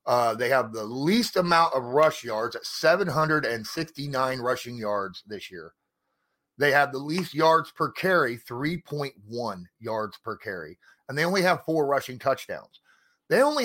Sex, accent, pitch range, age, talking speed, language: male, American, 130-175 Hz, 30-49, 155 wpm, English